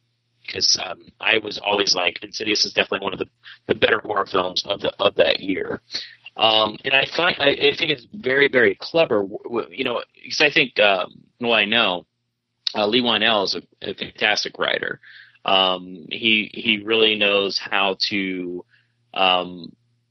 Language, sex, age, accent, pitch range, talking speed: English, male, 30-49, American, 100-120 Hz, 175 wpm